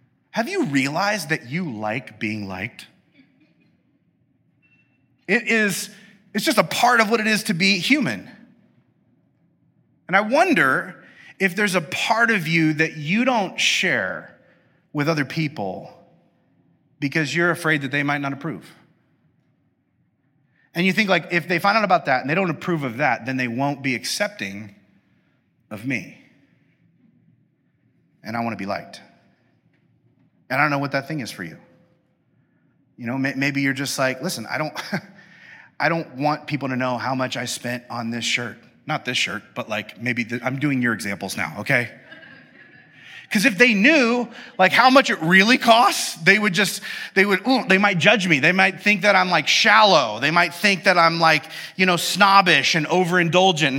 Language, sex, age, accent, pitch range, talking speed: English, male, 30-49, American, 135-200 Hz, 175 wpm